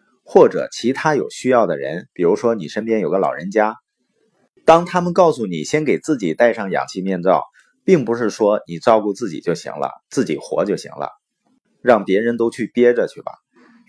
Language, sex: Chinese, male